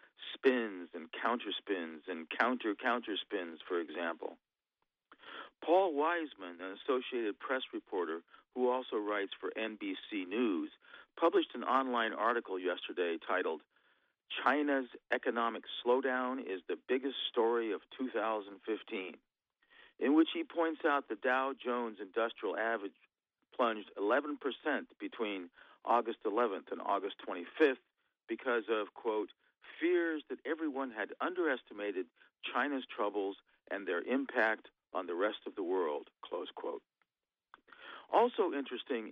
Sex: male